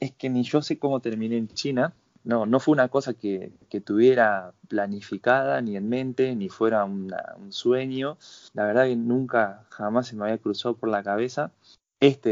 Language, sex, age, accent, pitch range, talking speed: Spanish, male, 20-39, Argentinian, 110-135 Hz, 190 wpm